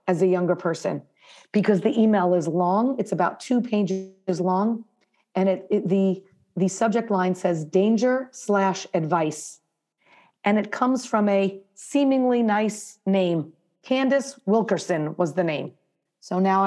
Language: English